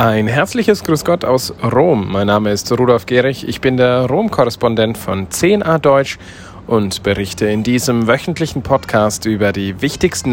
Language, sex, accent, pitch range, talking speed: German, male, German, 100-130 Hz, 155 wpm